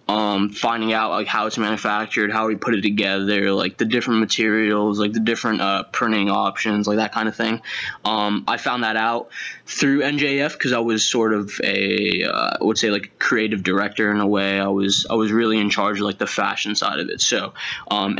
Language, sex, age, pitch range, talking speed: English, male, 10-29, 105-125 Hz, 220 wpm